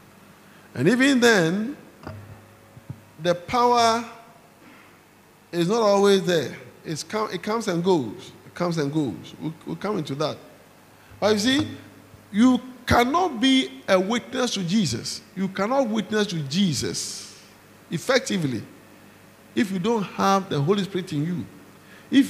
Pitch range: 150-215 Hz